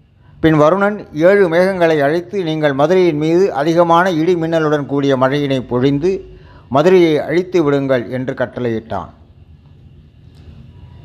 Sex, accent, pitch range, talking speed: male, native, 130-175 Hz, 105 wpm